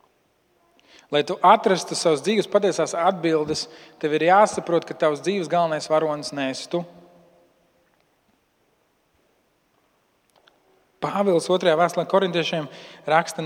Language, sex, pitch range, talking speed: English, male, 150-185 Hz, 100 wpm